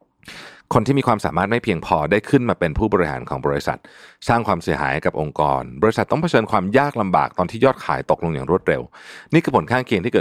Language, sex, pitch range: Thai, male, 90-125 Hz